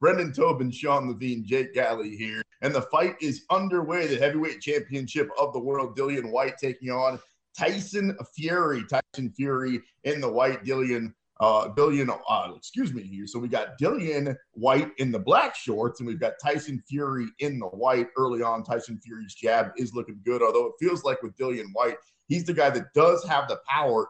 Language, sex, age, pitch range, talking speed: English, male, 30-49, 120-160 Hz, 185 wpm